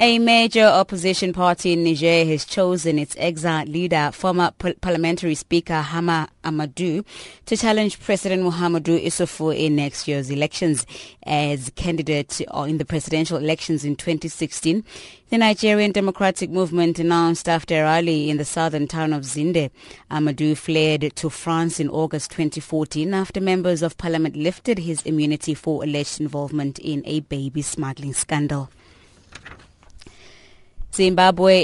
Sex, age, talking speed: female, 20-39, 130 wpm